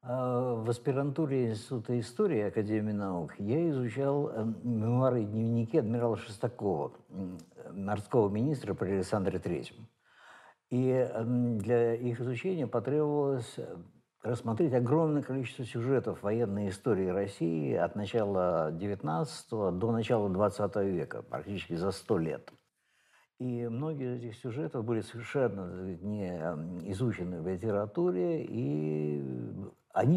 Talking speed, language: 105 wpm, Russian